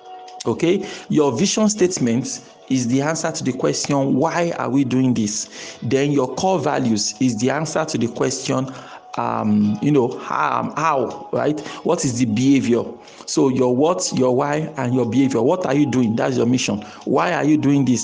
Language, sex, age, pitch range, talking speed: English, male, 50-69, 125-155 Hz, 185 wpm